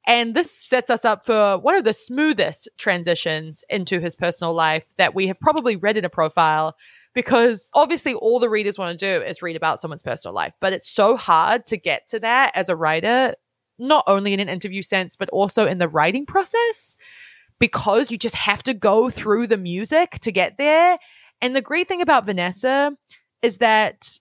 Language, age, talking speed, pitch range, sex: English, 20-39, 200 wpm, 180-255 Hz, female